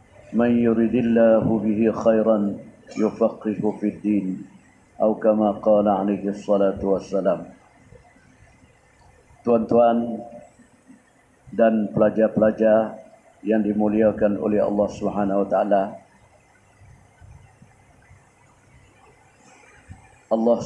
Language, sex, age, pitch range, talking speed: Malay, male, 50-69, 105-120 Hz, 70 wpm